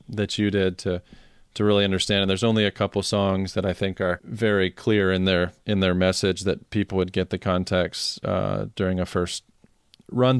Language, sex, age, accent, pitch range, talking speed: English, male, 30-49, American, 95-105 Hz, 200 wpm